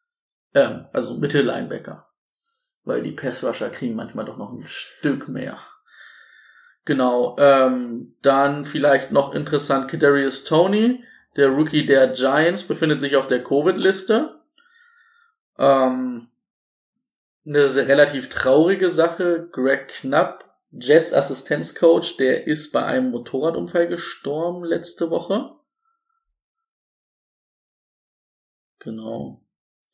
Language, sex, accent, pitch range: German, male, German, 140-225 Hz